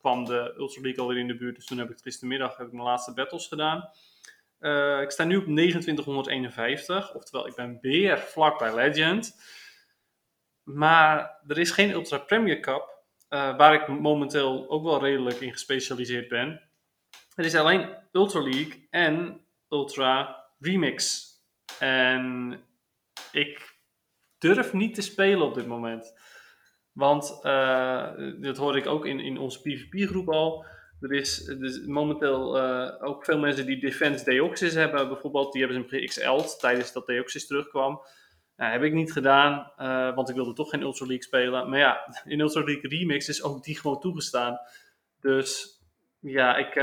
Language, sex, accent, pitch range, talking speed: Dutch, male, Dutch, 130-155 Hz, 160 wpm